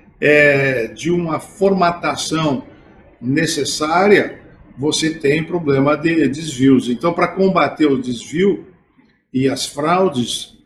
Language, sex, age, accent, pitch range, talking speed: Portuguese, male, 50-69, Brazilian, 145-195 Hz, 100 wpm